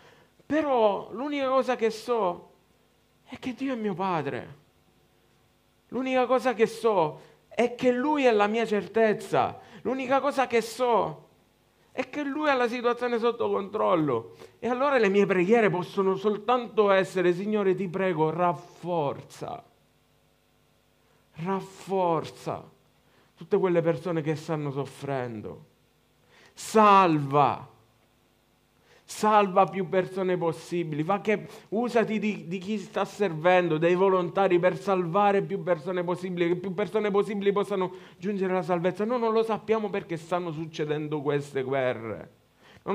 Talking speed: 125 wpm